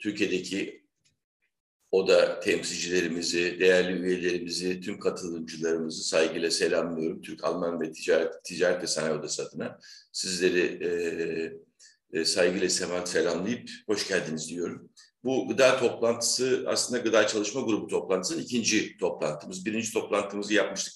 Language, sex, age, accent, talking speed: Turkish, male, 50-69, native, 110 wpm